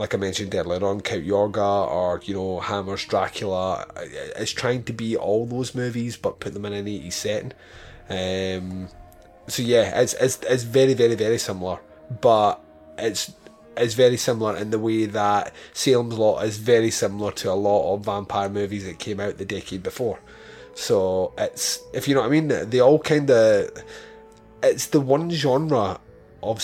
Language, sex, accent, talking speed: English, male, British, 180 wpm